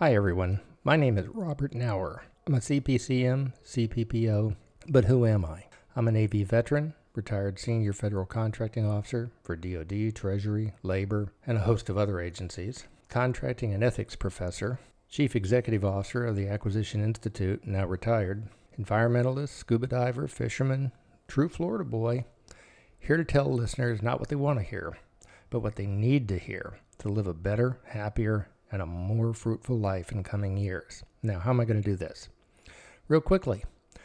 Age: 60-79